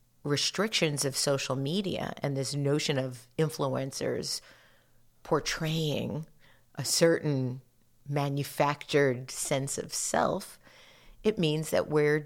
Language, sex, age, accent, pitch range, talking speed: English, female, 40-59, American, 125-155 Hz, 100 wpm